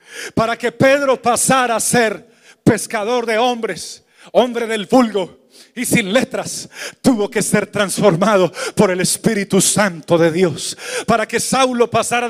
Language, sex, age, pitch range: Spanish, male, 40-59, 200-240 Hz